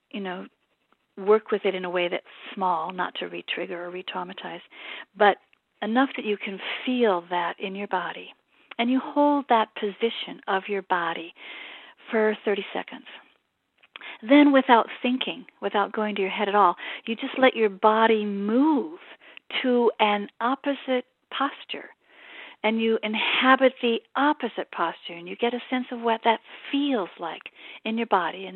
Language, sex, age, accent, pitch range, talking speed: English, female, 50-69, American, 190-250 Hz, 160 wpm